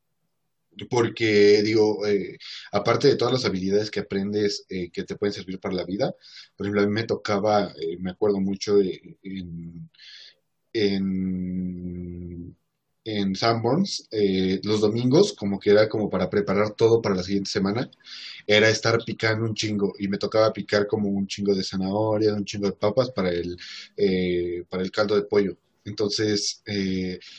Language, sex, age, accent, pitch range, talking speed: Spanish, male, 30-49, Mexican, 95-110 Hz, 165 wpm